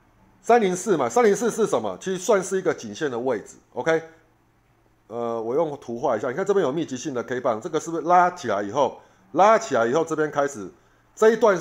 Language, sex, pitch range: Chinese, male, 125-185 Hz